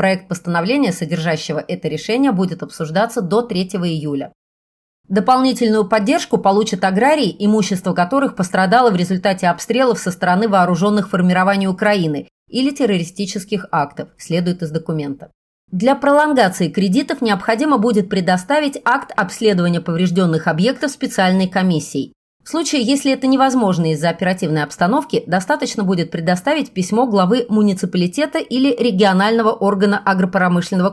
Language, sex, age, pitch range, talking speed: Russian, female, 30-49, 175-230 Hz, 120 wpm